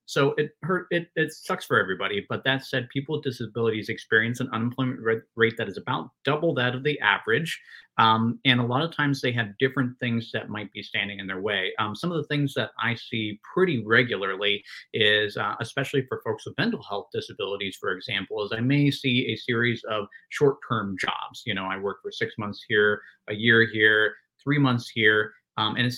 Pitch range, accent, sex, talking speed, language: 110-130 Hz, American, male, 210 wpm, English